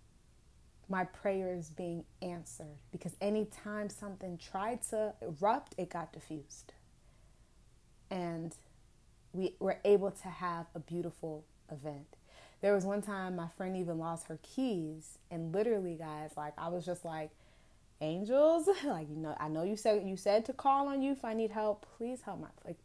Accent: American